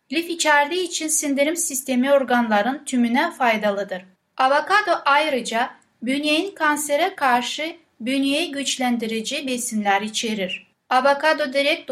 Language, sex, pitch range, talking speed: Turkish, female, 235-285 Hz, 95 wpm